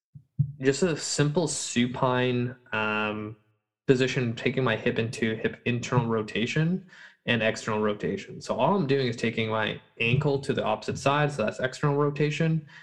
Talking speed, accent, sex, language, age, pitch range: 150 wpm, American, male, English, 20-39, 115-145 Hz